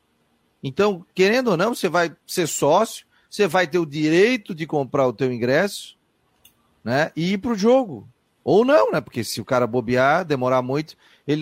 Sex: male